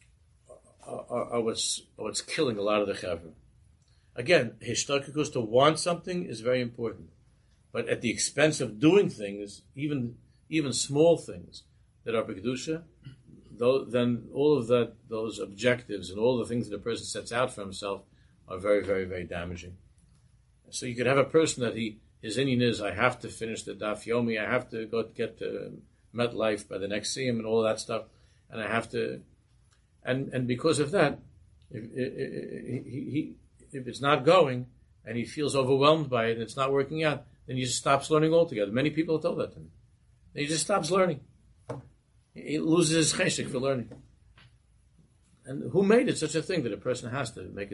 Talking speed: 190 wpm